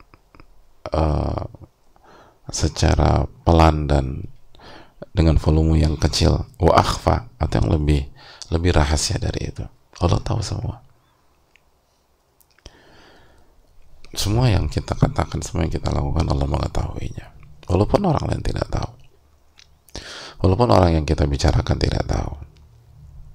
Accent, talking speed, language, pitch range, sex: Indonesian, 105 wpm, English, 75-105 Hz, male